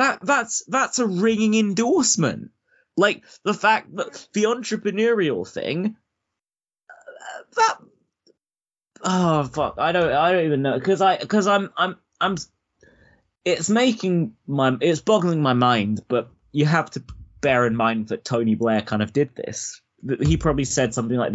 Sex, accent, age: male, British, 20-39